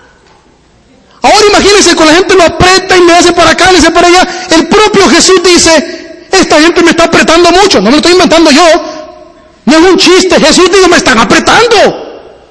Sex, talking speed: male, 200 wpm